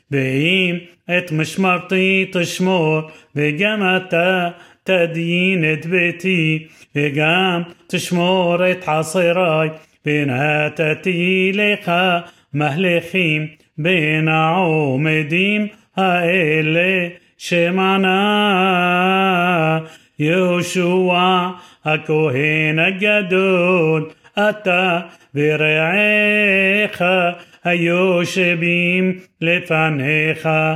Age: 30-49